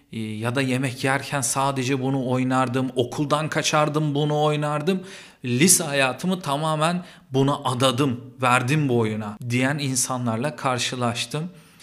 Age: 50-69